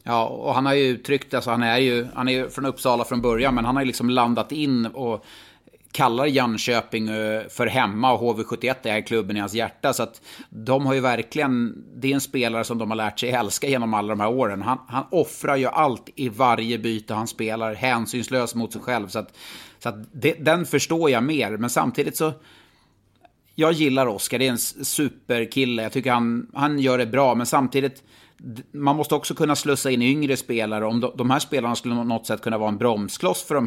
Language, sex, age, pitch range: Swedish, male, 30-49, 110-135 Hz